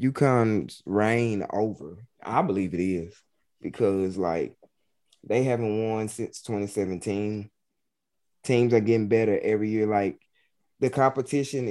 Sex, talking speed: male, 120 wpm